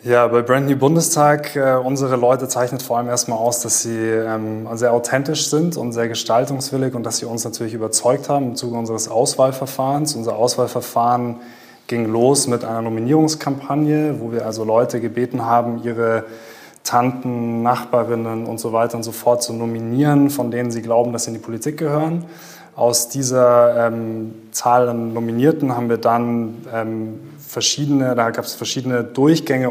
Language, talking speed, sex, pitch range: German, 160 wpm, male, 115-130 Hz